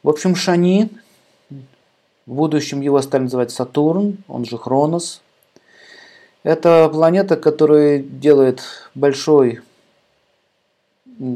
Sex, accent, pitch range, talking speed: male, native, 125-165 Hz, 90 wpm